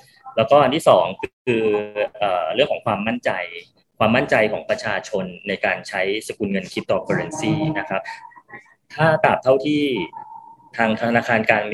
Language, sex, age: Thai, male, 20-39